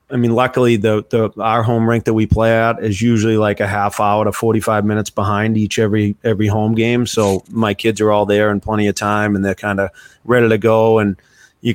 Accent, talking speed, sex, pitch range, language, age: American, 235 wpm, male, 105-115 Hz, English, 30-49